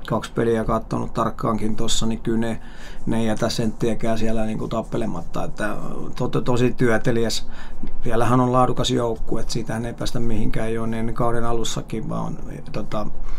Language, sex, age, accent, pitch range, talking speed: Finnish, male, 30-49, native, 110-115 Hz, 155 wpm